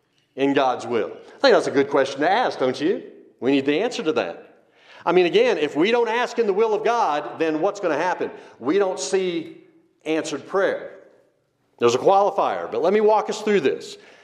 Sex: male